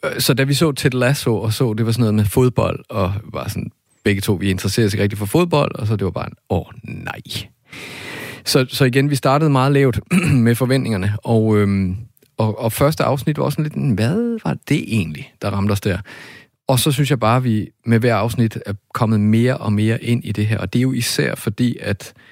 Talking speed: 235 wpm